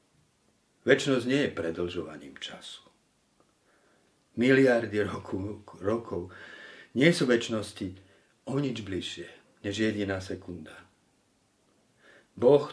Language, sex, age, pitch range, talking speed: Slovak, male, 50-69, 100-120 Hz, 90 wpm